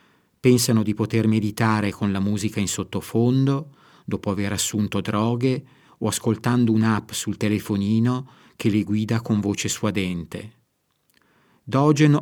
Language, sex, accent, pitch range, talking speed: Italian, male, native, 105-125 Hz, 125 wpm